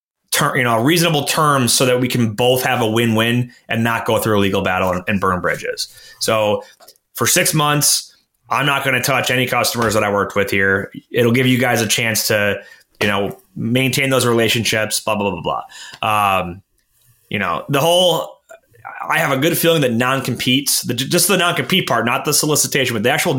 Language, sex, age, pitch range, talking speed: English, male, 30-49, 110-145 Hz, 200 wpm